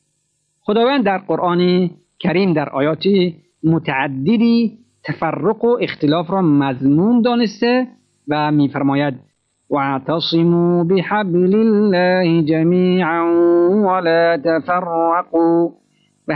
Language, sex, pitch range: Persian, male, 150-195 Hz